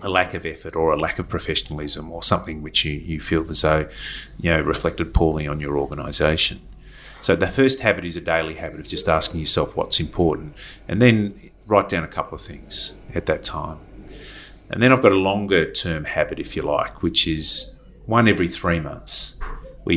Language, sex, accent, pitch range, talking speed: English, male, Australian, 80-95 Hz, 200 wpm